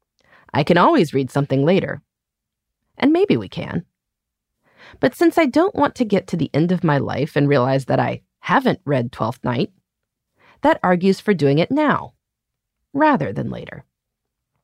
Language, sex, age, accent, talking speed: English, female, 30-49, American, 165 wpm